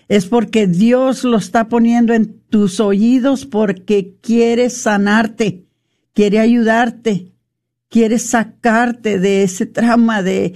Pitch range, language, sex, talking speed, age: 200-240 Hz, Spanish, female, 115 wpm, 50-69